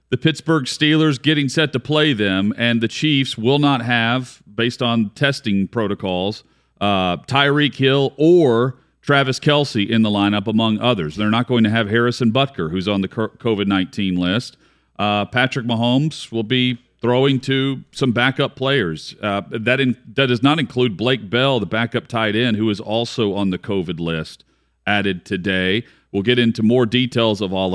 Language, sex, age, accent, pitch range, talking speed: English, male, 40-59, American, 105-135 Hz, 170 wpm